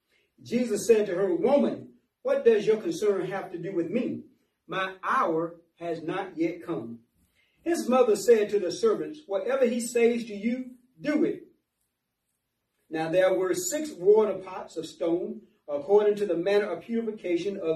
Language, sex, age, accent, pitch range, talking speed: English, male, 40-59, American, 170-255 Hz, 160 wpm